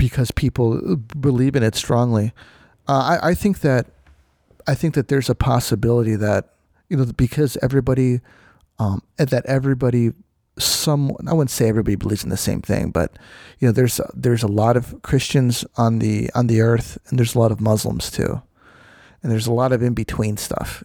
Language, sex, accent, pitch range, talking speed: English, male, American, 110-135 Hz, 185 wpm